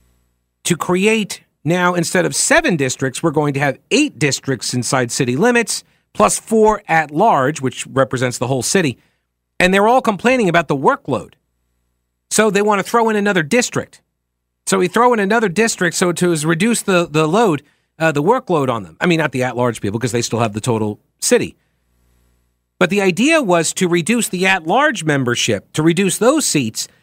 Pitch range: 130-190 Hz